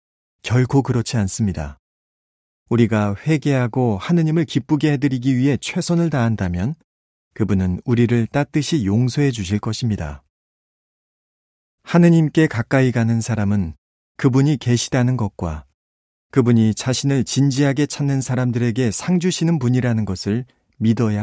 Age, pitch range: 40-59, 100-140 Hz